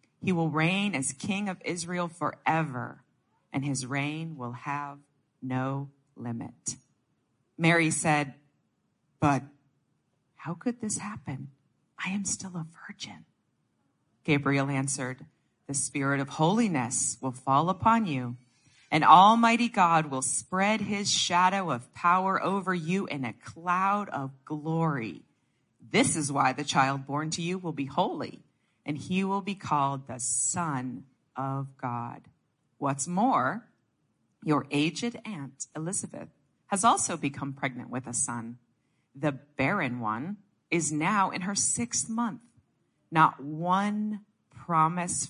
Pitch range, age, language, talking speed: 140-200 Hz, 40-59, English, 130 wpm